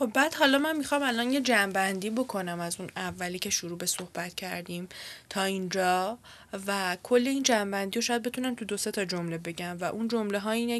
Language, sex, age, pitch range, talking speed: Persian, female, 10-29, 185-230 Hz, 195 wpm